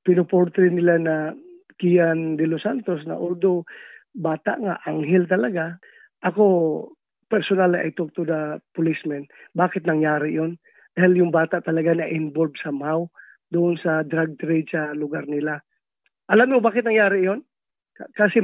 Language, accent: English, Filipino